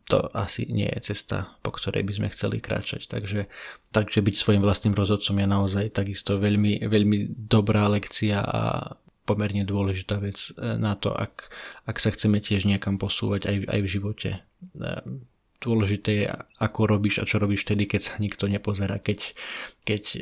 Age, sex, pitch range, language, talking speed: 20-39, male, 100-110 Hz, Slovak, 165 wpm